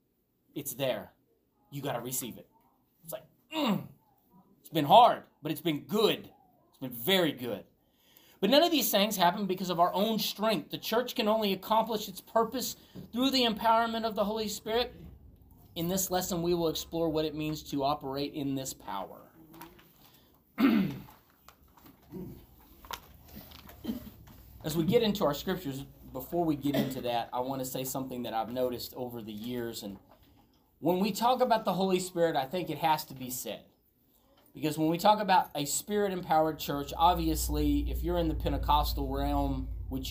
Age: 30-49